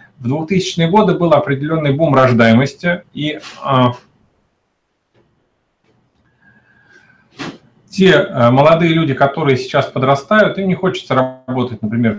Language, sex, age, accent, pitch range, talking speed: Russian, male, 30-49, native, 115-145 Hz, 105 wpm